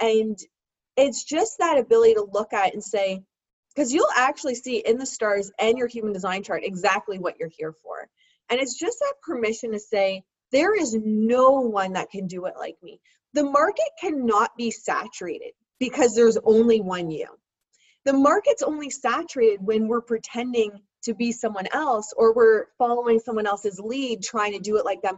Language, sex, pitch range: English, female, 205-280 Hz